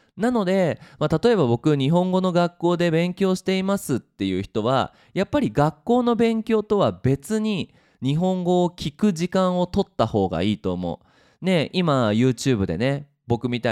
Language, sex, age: Japanese, male, 20-39